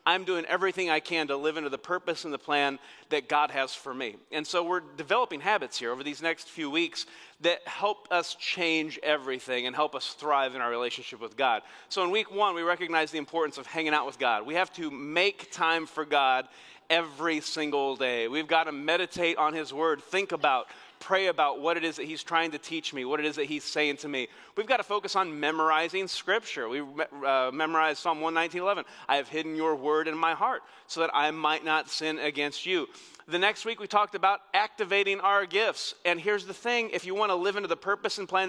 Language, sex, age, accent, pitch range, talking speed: English, male, 30-49, American, 150-185 Hz, 230 wpm